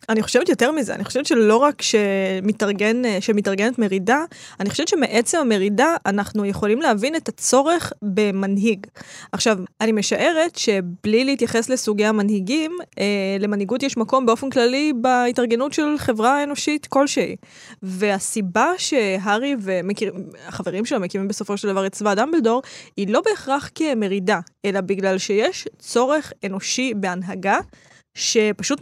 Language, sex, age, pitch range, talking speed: Hebrew, female, 20-39, 200-255 Hz, 125 wpm